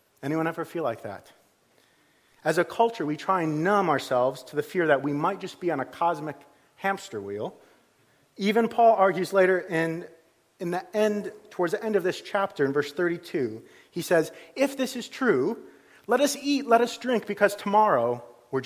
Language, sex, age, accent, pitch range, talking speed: English, male, 40-59, American, 125-190 Hz, 185 wpm